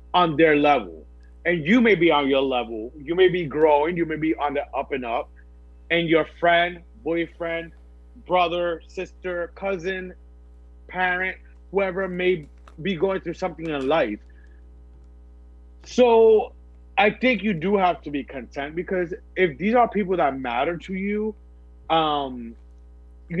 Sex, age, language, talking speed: male, 30-49, English, 145 wpm